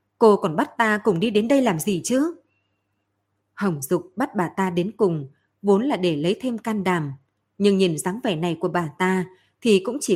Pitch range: 180-230 Hz